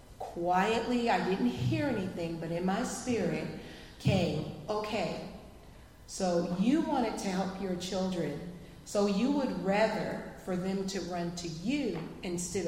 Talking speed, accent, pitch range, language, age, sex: 135 wpm, American, 180-225 Hz, English, 40-59, female